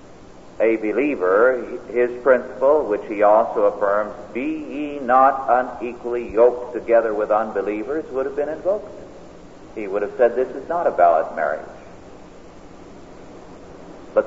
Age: 60-79